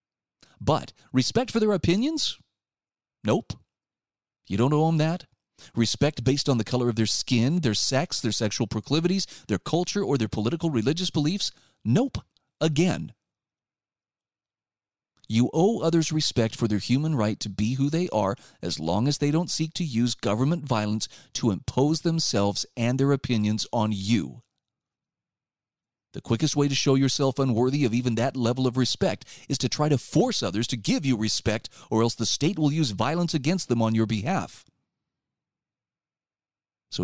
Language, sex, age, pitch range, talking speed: English, male, 30-49, 110-155 Hz, 160 wpm